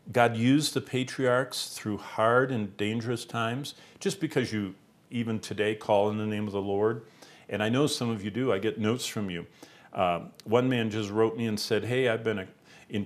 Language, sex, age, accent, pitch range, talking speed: English, male, 50-69, American, 105-130 Hz, 205 wpm